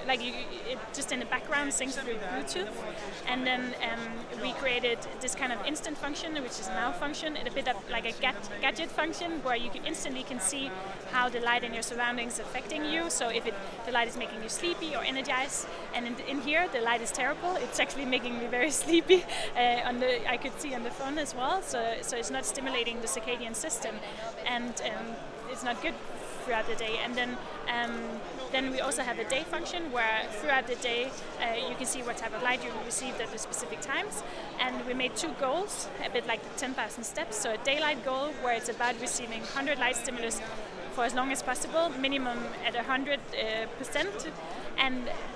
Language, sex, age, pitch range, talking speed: English, female, 20-39, 235-270 Hz, 215 wpm